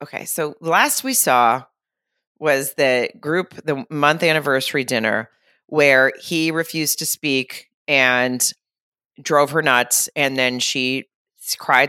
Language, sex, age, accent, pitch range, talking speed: English, female, 30-49, American, 130-160 Hz, 125 wpm